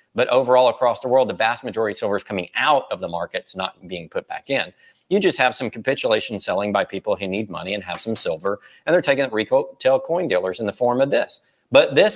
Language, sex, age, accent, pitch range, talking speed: English, male, 40-59, American, 105-130 Hz, 245 wpm